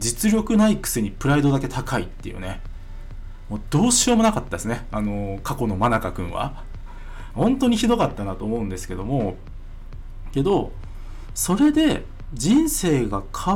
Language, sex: Japanese, male